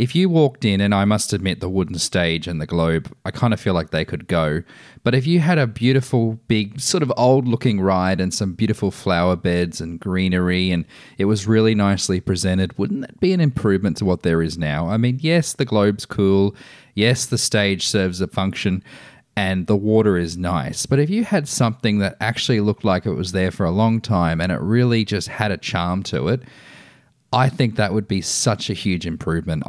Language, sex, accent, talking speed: English, male, Australian, 215 wpm